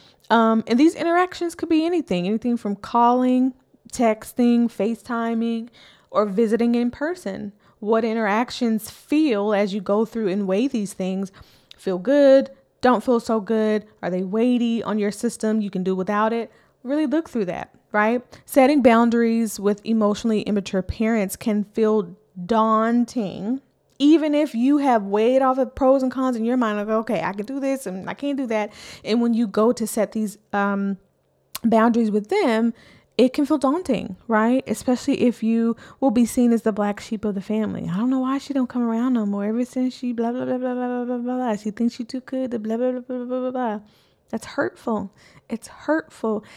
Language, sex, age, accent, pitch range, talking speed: English, female, 20-39, American, 210-255 Hz, 190 wpm